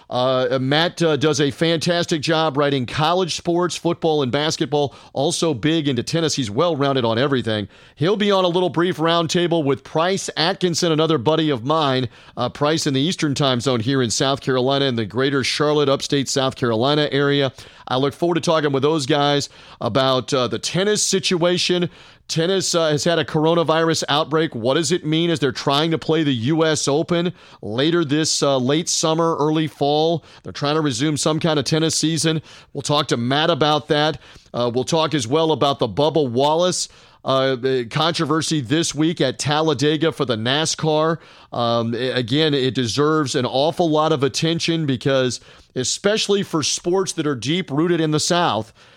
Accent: American